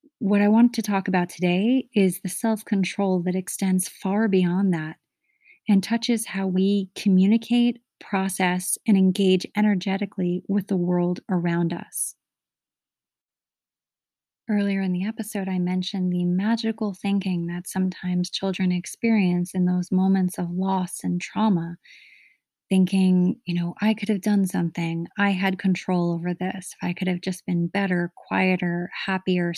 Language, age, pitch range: English, 30-49, 180-210 Hz